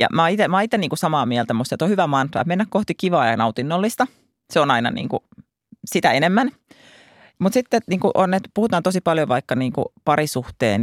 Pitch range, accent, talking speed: 150-215 Hz, native, 195 wpm